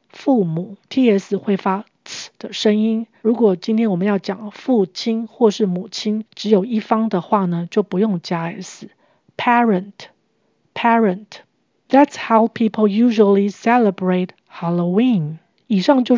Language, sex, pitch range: Chinese, female, 190-225 Hz